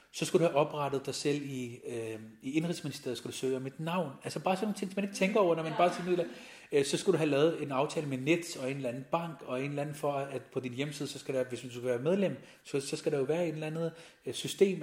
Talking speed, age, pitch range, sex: 290 wpm, 30-49, 130-165 Hz, male